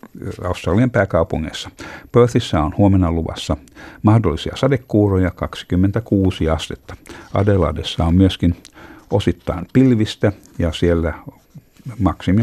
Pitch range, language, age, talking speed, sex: 85-105 Hz, Finnish, 60-79, 85 wpm, male